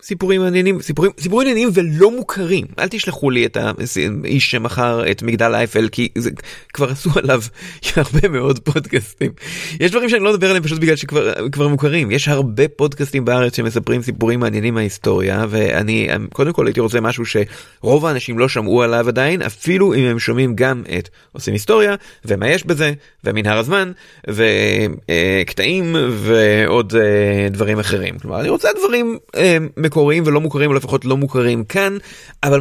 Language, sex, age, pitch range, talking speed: Hebrew, male, 30-49, 115-160 Hz, 155 wpm